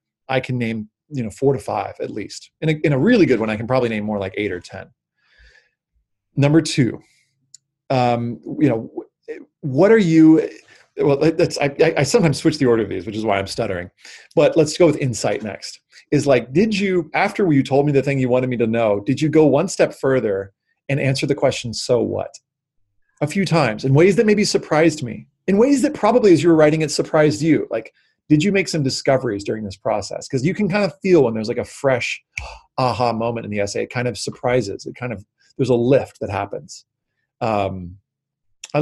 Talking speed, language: 215 wpm, English